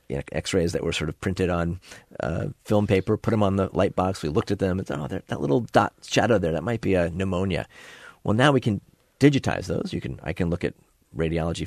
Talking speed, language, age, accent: 235 wpm, English, 40-59, American